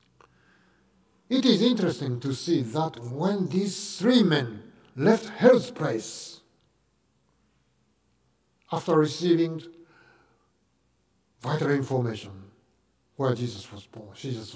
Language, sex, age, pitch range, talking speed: English, male, 60-79, 115-185 Hz, 80 wpm